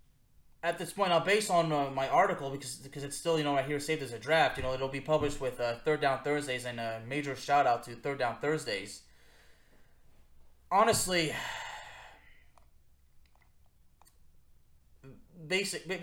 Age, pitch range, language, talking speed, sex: 20-39, 125-190 Hz, English, 160 wpm, male